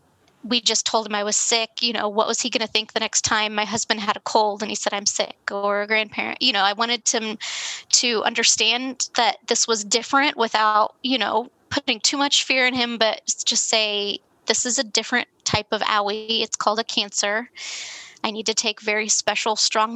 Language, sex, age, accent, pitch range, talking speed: English, female, 20-39, American, 215-245 Hz, 215 wpm